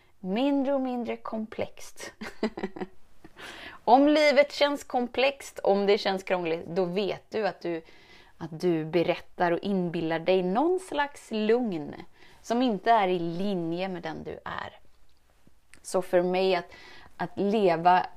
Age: 20-39